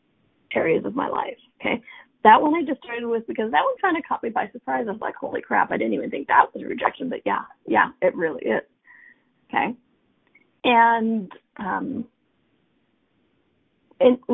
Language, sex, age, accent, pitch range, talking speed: English, female, 30-49, American, 210-310 Hz, 180 wpm